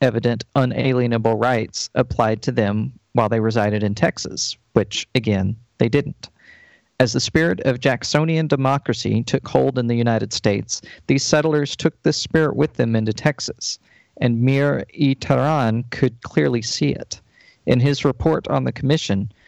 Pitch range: 115-145 Hz